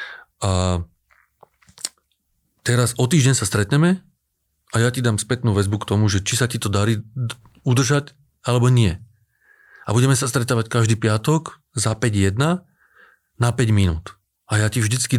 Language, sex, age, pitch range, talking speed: Slovak, male, 40-59, 105-135 Hz, 150 wpm